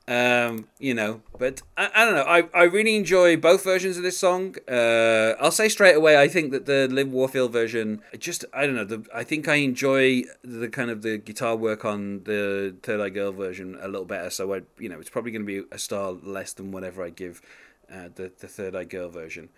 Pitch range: 105-150 Hz